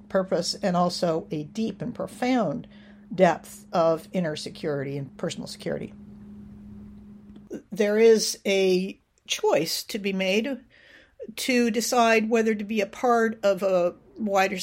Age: 50-69